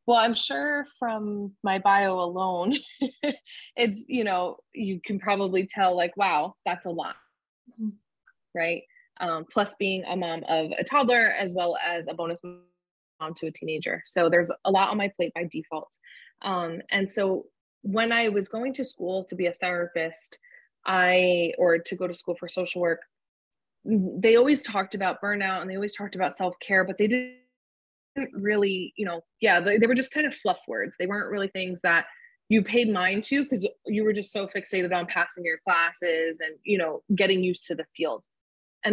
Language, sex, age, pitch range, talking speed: English, female, 20-39, 170-205 Hz, 190 wpm